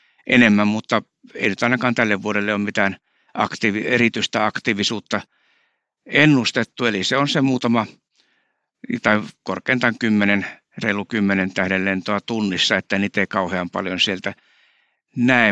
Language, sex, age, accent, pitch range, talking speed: Finnish, male, 60-79, native, 100-125 Hz, 115 wpm